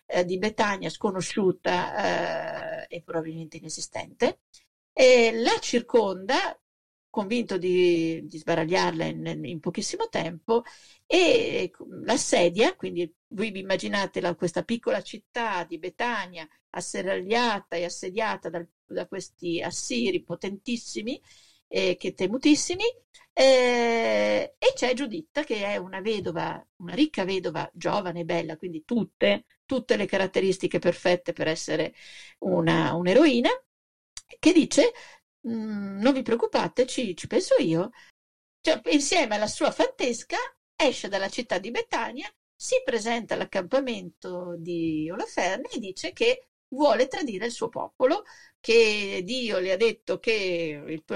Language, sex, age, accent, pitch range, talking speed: Italian, female, 50-69, native, 175-280 Hz, 120 wpm